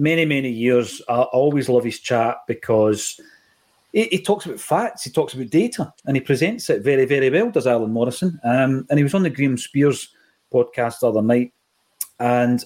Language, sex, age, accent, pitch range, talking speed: English, male, 40-59, British, 120-150 Hz, 195 wpm